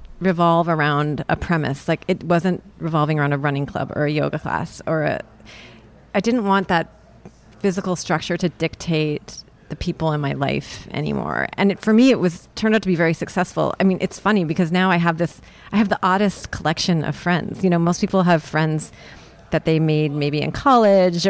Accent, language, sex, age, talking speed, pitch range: American, English, female, 30-49, 195 wpm, 155-195 Hz